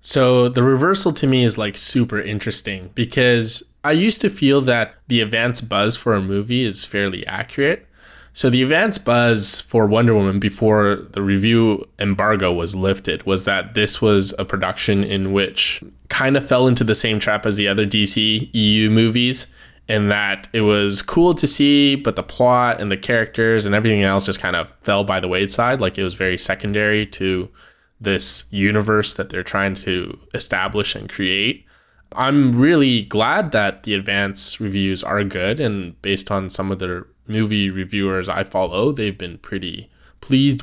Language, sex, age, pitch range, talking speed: English, male, 20-39, 100-120 Hz, 175 wpm